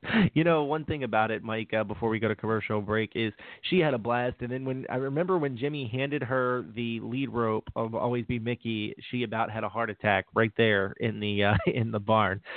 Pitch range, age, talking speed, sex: 120-160 Hz, 30-49, 235 wpm, male